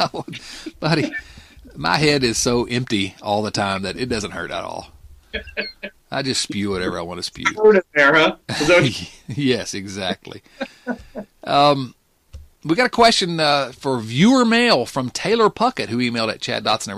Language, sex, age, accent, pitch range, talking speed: English, male, 40-59, American, 110-155 Hz, 150 wpm